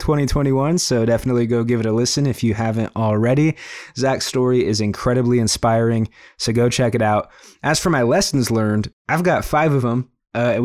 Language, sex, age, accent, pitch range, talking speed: English, male, 20-39, American, 115-135 Hz, 185 wpm